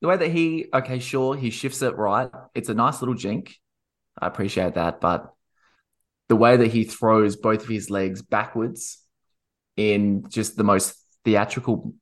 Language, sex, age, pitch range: English, male, 20-39, 100-120 Hz